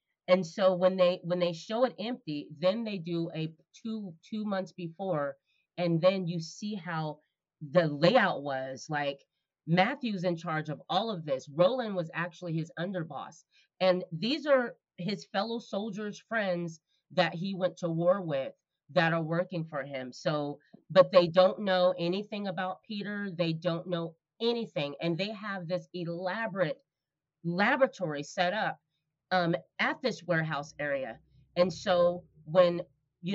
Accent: American